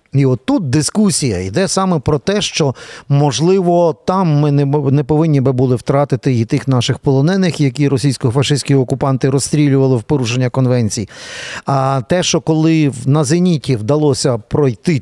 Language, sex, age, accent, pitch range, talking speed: Ukrainian, male, 50-69, native, 130-165 Hz, 145 wpm